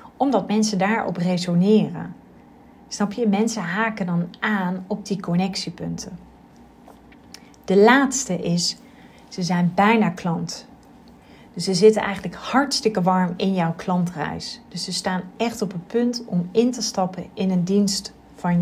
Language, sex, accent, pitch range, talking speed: Dutch, female, Dutch, 175-220 Hz, 140 wpm